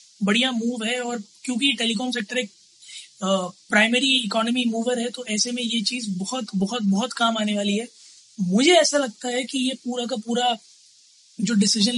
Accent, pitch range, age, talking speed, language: native, 215-255 Hz, 20-39, 175 wpm, Hindi